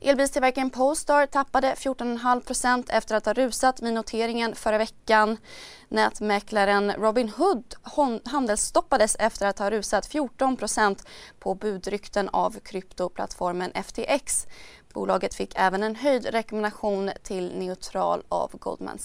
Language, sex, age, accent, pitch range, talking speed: Swedish, female, 20-39, native, 205-255 Hz, 110 wpm